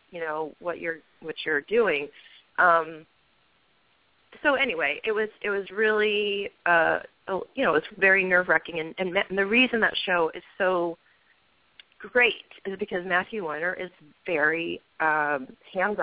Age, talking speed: 30-49, 145 wpm